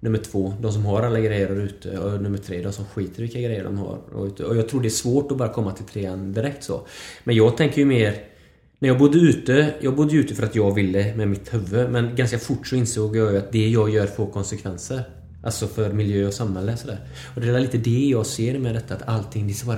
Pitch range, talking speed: 100-135 Hz, 260 wpm